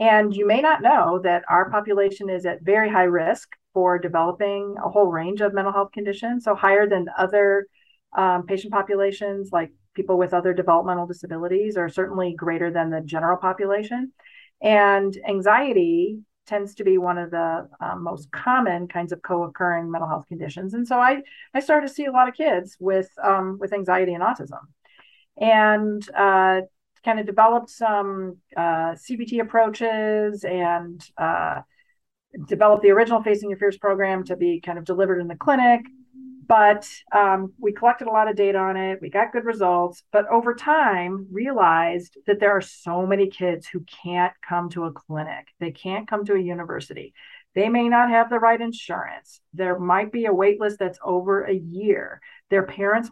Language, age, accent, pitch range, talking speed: English, 40-59, American, 180-220 Hz, 175 wpm